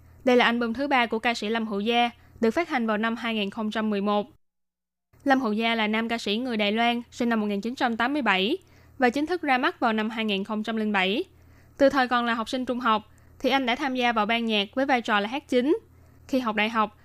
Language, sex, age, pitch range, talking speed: Vietnamese, female, 10-29, 220-275 Hz, 225 wpm